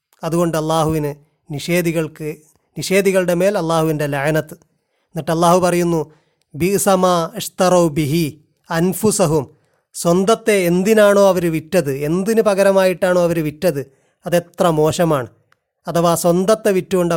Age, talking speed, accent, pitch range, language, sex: 30-49, 95 wpm, native, 160-190 Hz, Malayalam, male